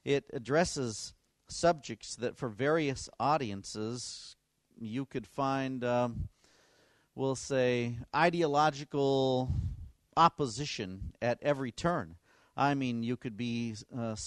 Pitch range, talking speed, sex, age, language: 110-140 Hz, 100 wpm, male, 50-69, Danish